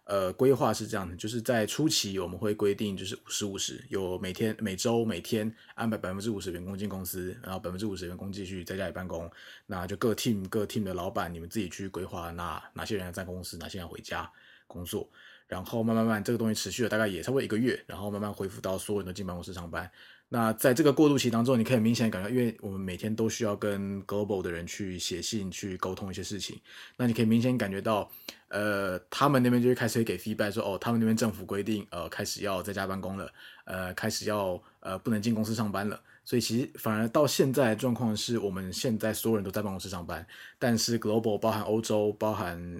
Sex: male